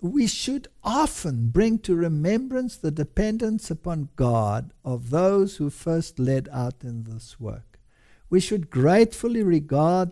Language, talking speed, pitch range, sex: English, 135 wpm, 125-180 Hz, male